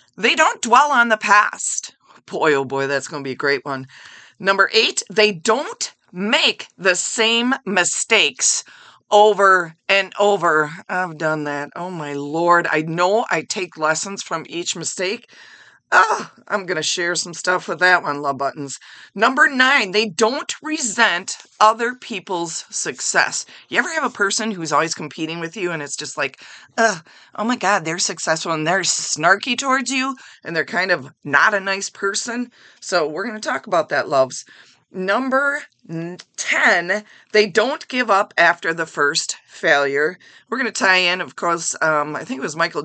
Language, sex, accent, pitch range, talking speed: English, female, American, 160-220 Hz, 175 wpm